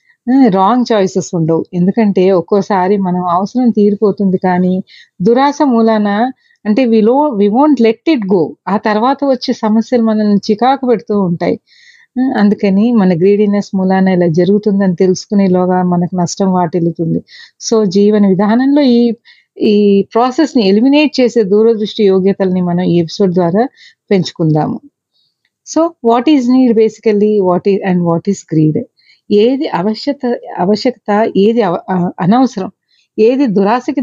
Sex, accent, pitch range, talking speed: female, native, 190-245 Hz, 125 wpm